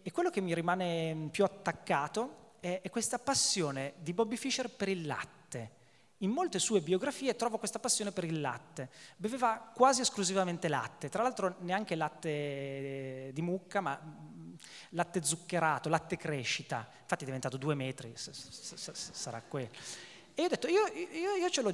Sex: male